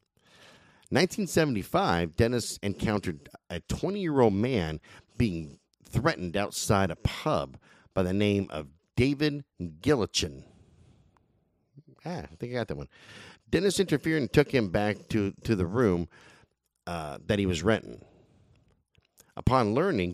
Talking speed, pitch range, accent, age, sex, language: 120 wpm, 95-155 Hz, American, 50-69, male, English